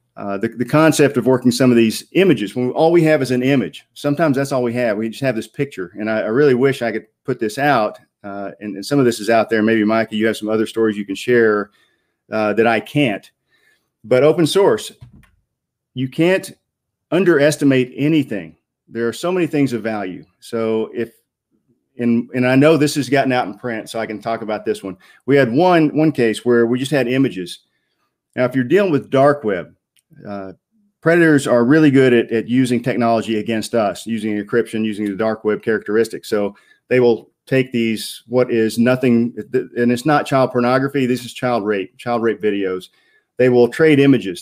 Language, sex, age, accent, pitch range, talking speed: English, male, 40-59, American, 110-135 Hz, 210 wpm